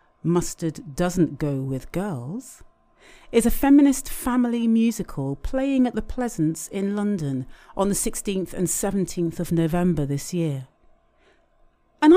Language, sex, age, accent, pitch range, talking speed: English, female, 40-59, British, 165-240 Hz, 130 wpm